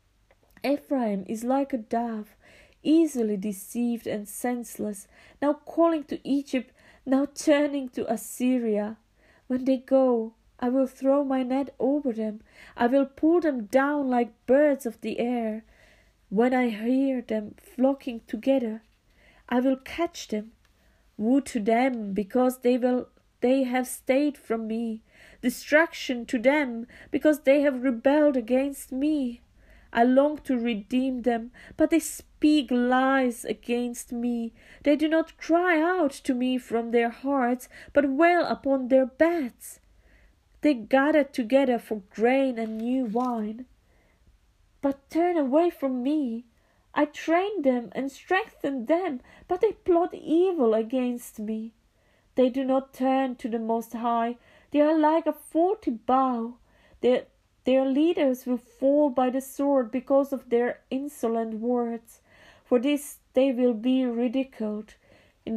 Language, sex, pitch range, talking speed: English, female, 235-280 Hz, 140 wpm